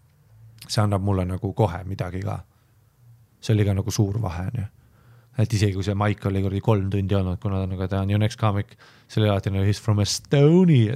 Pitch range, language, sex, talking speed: 110-150 Hz, English, male, 220 wpm